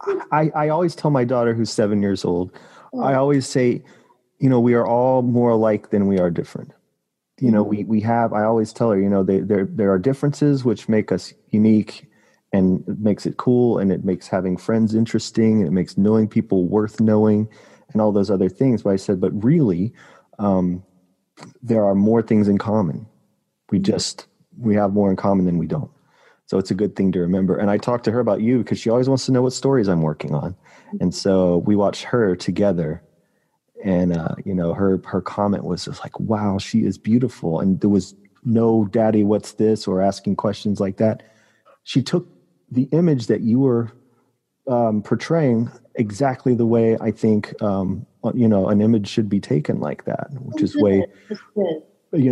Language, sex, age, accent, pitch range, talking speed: English, male, 30-49, American, 100-120 Hz, 200 wpm